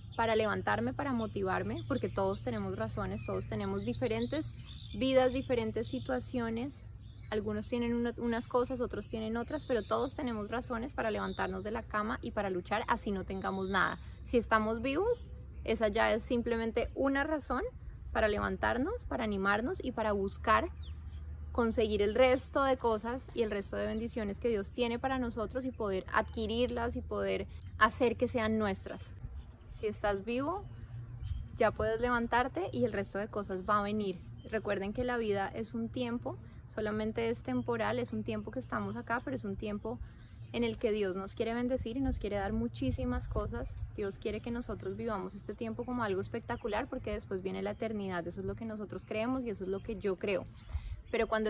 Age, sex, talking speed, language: 20-39, female, 180 wpm, Spanish